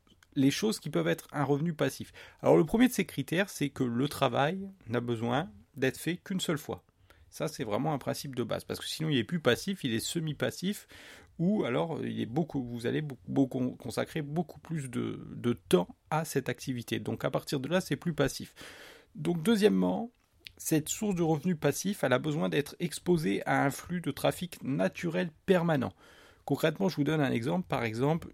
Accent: French